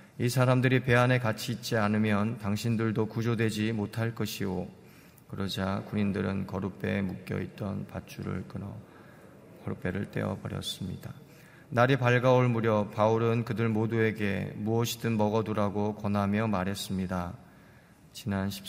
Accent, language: native, Korean